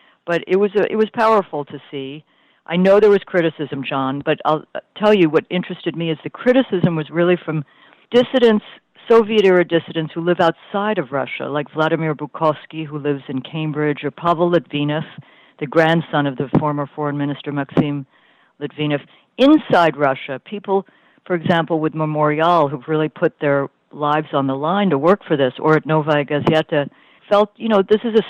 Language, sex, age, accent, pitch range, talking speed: English, female, 60-79, American, 145-180 Hz, 180 wpm